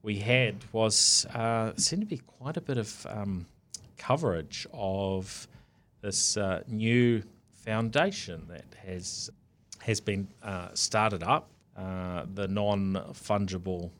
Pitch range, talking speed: 95-110 Hz, 120 wpm